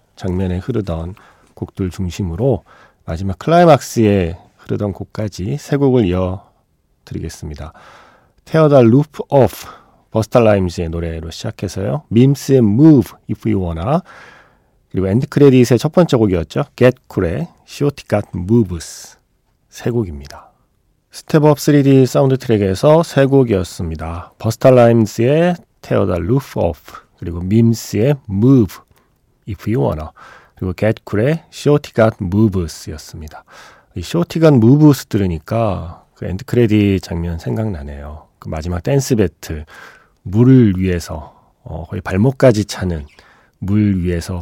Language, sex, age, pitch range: Korean, male, 40-59, 90-135 Hz